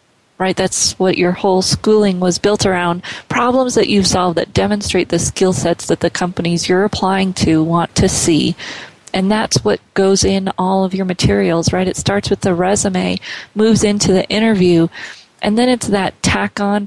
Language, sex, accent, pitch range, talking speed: English, female, American, 175-210 Hz, 180 wpm